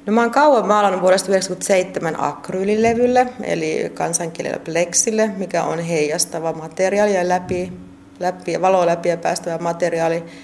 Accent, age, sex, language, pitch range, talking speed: native, 30-49, female, Finnish, 165-195 Hz, 125 wpm